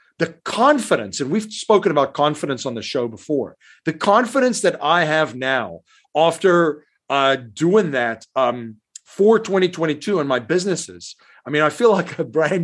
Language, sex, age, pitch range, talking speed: English, male, 50-69, 135-185 Hz, 160 wpm